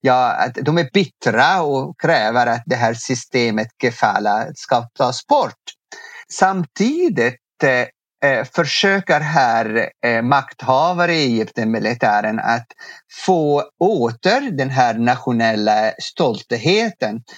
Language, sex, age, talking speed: Swedish, male, 50-69, 105 wpm